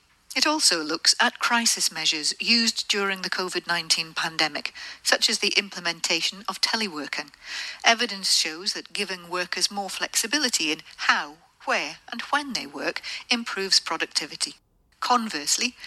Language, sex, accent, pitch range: Japanese, female, British, 170-235 Hz